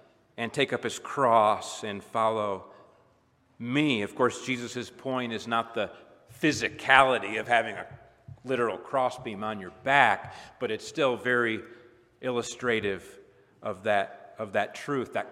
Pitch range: 115-130 Hz